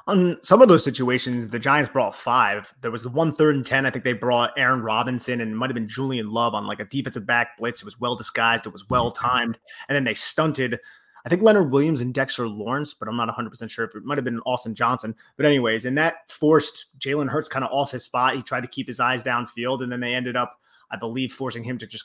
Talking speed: 250 wpm